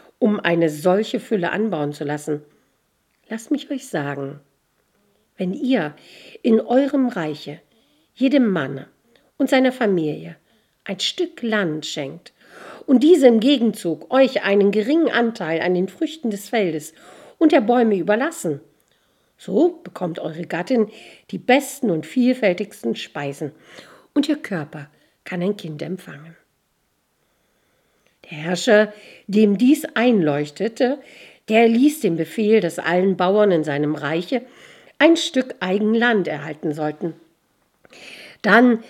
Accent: German